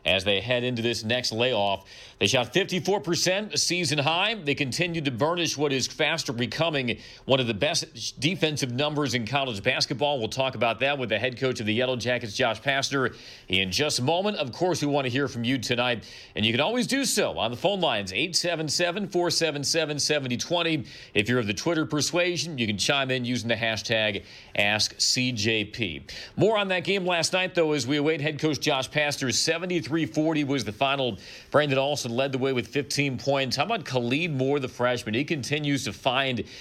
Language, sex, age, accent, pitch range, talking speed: English, male, 40-59, American, 125-160 Hz, 200 wpm